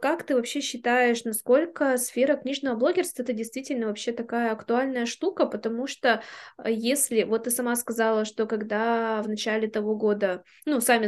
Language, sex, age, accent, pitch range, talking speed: Russian, female, 20-39, native, 225-265 Hz, 155 wpm